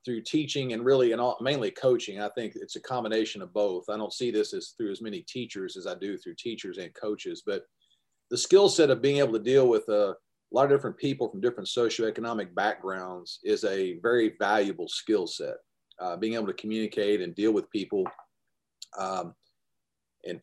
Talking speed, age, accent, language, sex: 195 wpm, 40-59, American, English, male